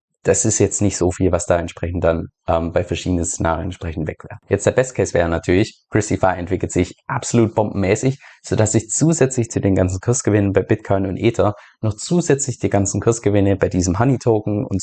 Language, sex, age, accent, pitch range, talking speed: German, male, 20-39, German, 90-110 Hz, 200 wpm